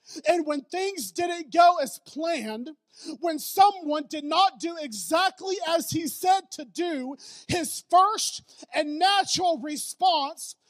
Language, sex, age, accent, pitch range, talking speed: English, male, 40-59, American, 250-335 Hz, 130 wpm